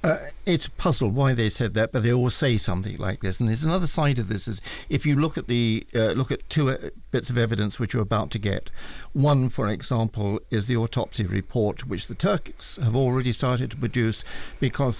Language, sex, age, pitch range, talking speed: English, male, 60-79, 110-140 Hz, 220 wpm